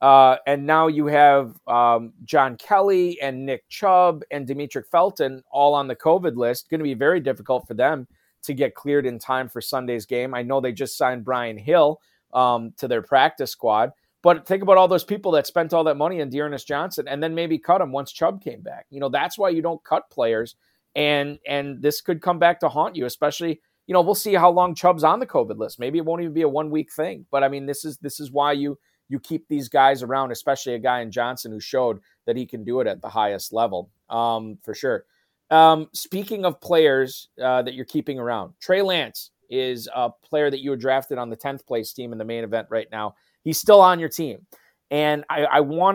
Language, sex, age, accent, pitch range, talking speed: English, male, 30-49, American, 130-160 Hz, 230 wpm